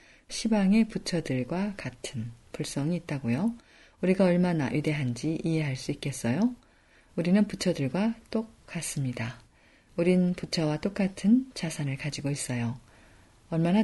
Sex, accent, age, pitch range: female, native, 40-59, 130-195 Hz